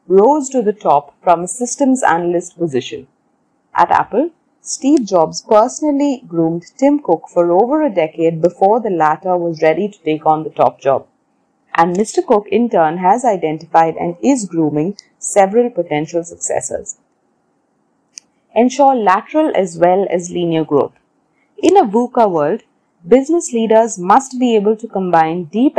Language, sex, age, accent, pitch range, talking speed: English, female, 30-49, Indian, 170-250 Hz, 150 wpm